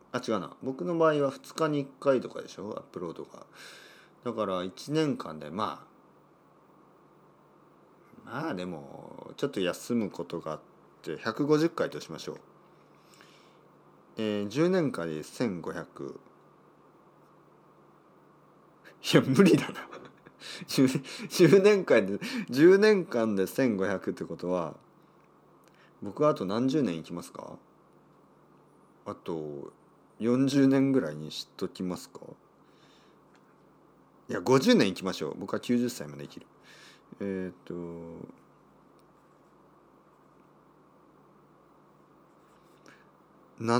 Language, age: Japanese, 40-59